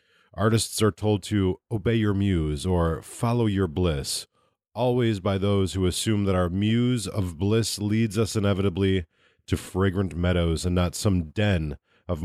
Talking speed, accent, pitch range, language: 155 wpm, American, 90-110 Hz, English